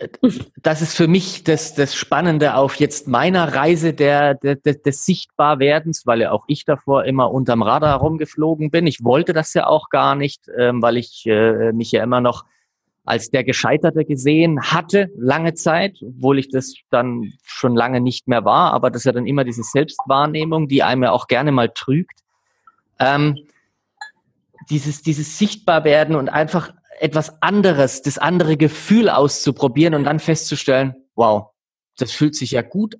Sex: male